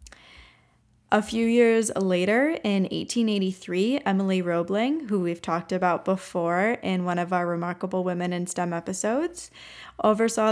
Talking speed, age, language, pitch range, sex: 130 wpm, 10-29, English, 180-205 Hz, female